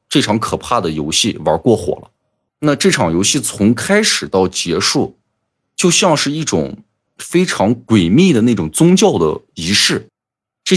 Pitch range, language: 95-155 Hz, Chinese